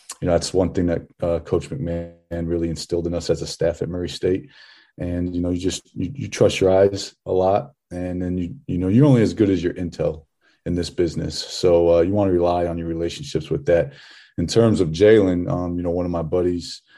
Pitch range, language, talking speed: 85-95 Hz, English, 240 wpm